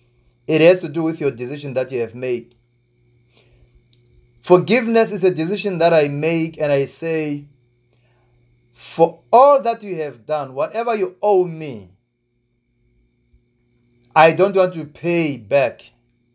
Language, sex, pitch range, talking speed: English, male, 120-185 Hz, 135 wpm